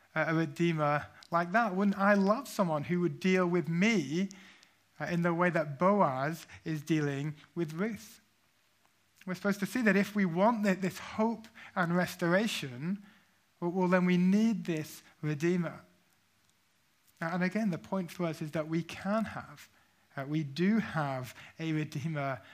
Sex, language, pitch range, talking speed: male, English, 145-180 Hz, 155 wpm